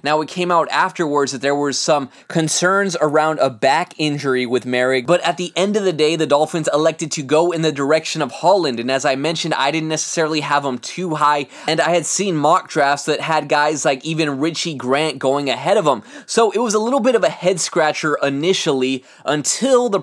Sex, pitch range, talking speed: male, 140-170 Hz, 220 wpm